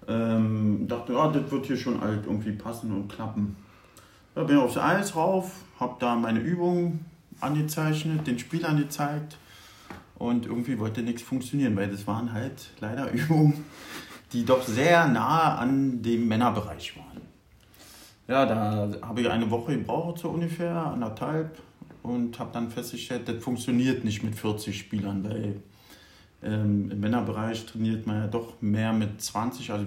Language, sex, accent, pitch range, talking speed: German, male, German, 105-150 Hz, 155 wpm